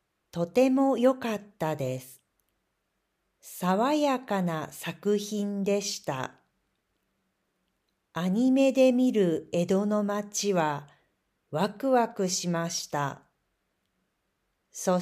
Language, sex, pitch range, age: Japanese, female, 170-245 Hz, 50-69